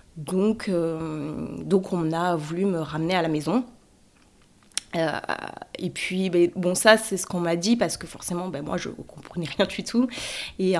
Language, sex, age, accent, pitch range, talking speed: French, female, 20-39, French, 160-195 Hz, 190 wpm